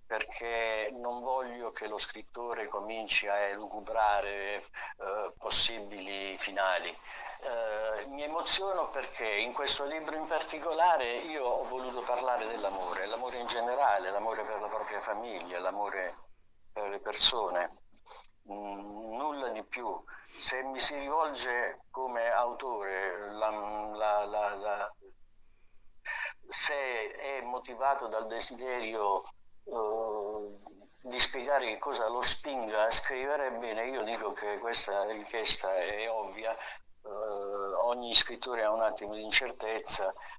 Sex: male